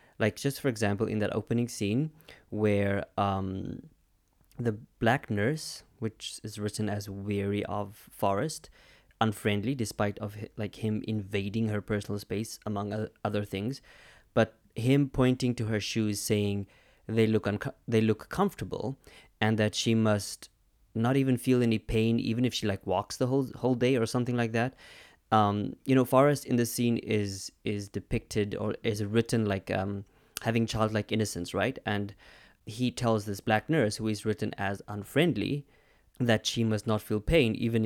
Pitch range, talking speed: 105-125 Hz, 165 wpm